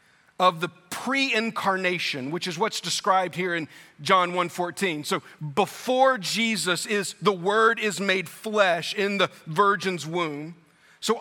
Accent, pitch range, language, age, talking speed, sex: American, 170-210 Hz, English, 40-59, 135 wpm, male